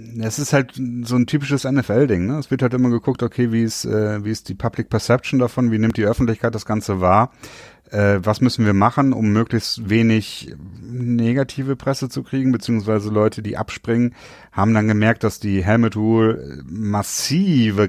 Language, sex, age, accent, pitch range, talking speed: German, male, 40-59, German, 85-115 Hz, 180 wpm